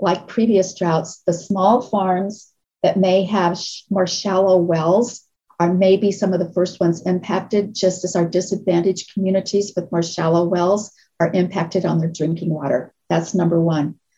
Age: 40-59